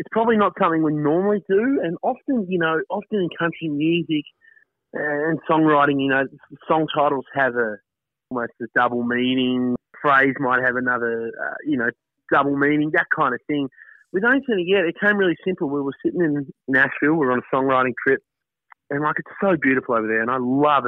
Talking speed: 200 wpm